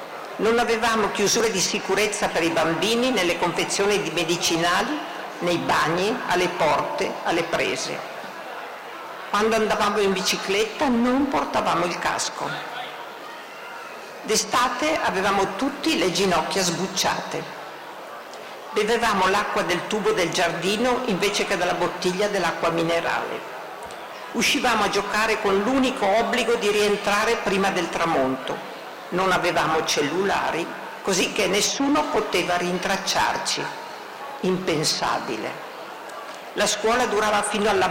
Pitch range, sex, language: 180-220 Hz, female, Italian